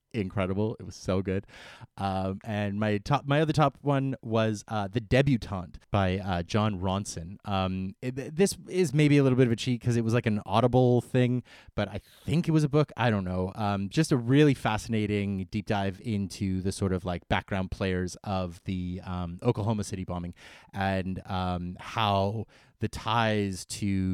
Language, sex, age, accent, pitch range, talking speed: English, male, 30-49, American, 95-115 Hz, 185 wpm